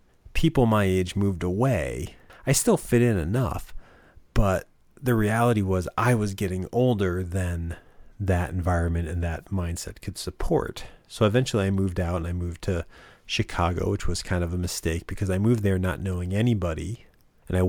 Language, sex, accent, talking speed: English, male, American, 175 wpm